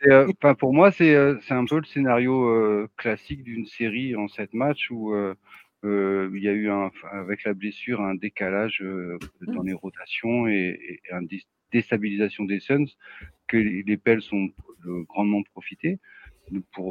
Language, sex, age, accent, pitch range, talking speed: French, male, 40-59, French, 95-115 Hz, 165 wpm